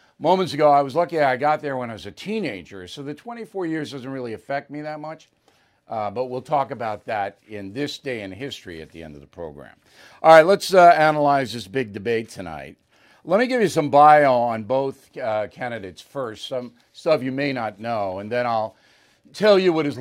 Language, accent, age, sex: English, American, 50-69, male